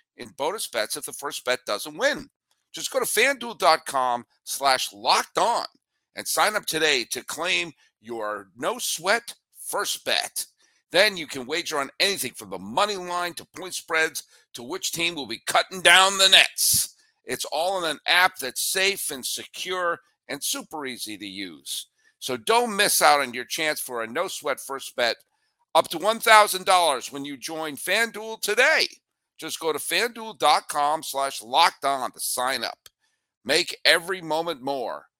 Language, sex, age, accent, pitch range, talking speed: English, male, 50-69, American, 155-230 Hz, 165 wpm